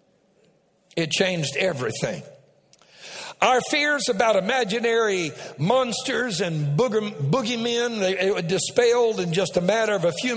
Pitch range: 160-230 Hz